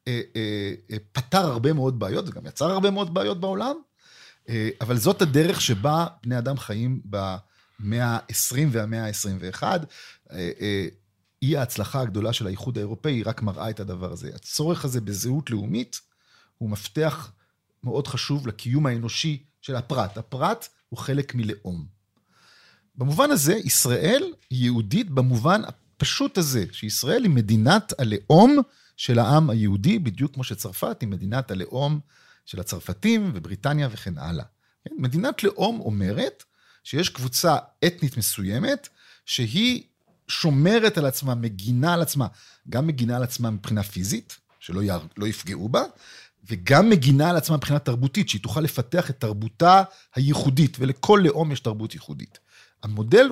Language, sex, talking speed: Hebrew, male, 135 wpm